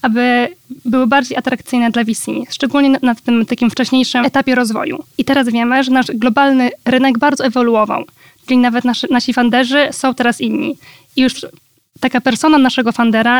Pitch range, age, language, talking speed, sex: 235-260 Hz, 20-39, Polish, 160 wpm, female